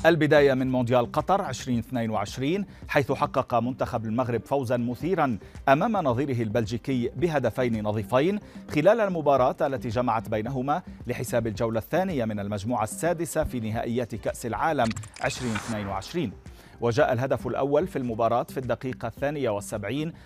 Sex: male